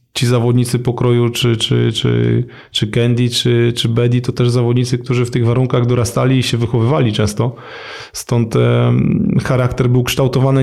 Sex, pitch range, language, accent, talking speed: male, 125-140 Hz, Polish, native, 150 wpm